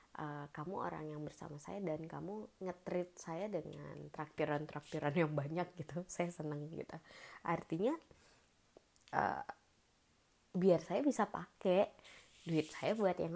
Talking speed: 130 wpm